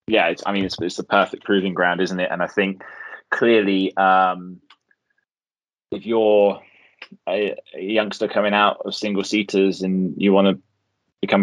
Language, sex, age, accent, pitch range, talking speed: English, male, 20-39, British, 85-100 Hz, 170 wpm